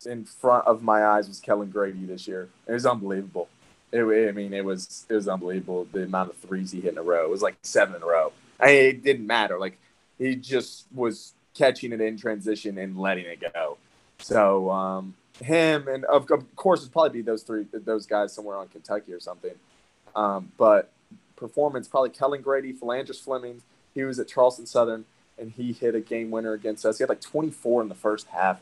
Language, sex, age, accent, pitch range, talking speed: English, male, 20-39, American, 105-125 Hz, 215 wpm